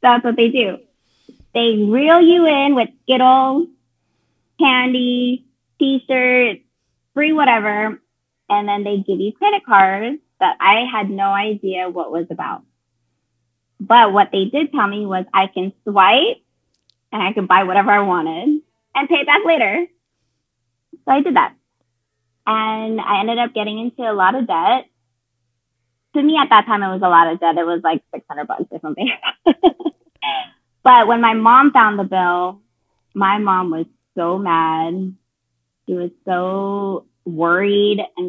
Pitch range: 170-245 Hz